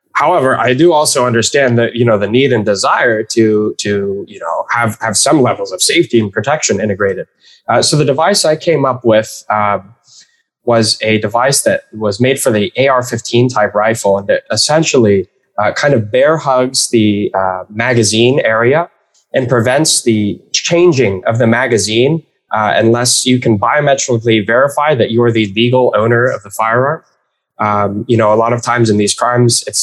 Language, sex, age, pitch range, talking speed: English, male, 20-39, 105-130 Hz, 180 wpm